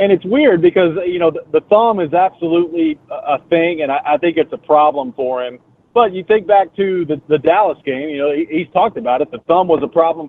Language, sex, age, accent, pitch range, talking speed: English, male, 40-59, American, 140-170 Hz, 225 wpm